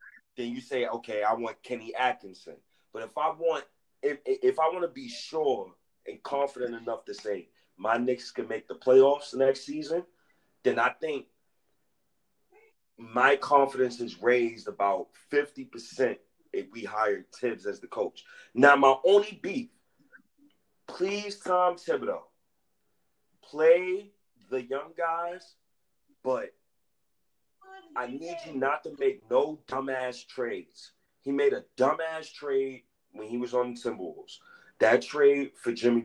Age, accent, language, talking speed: 30-49, American, English, 140 wpm